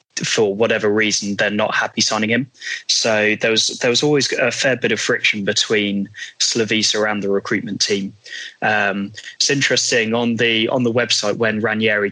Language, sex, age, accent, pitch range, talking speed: English, male, 20-39, British, 100-115 Hz, 175 wpm